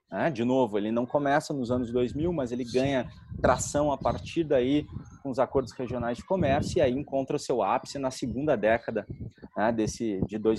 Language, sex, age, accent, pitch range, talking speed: Portuguese, male, 30-49, Brazilian, 115-145 Hz, 175 wpm